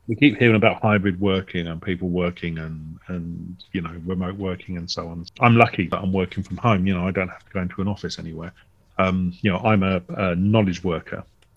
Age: 40-59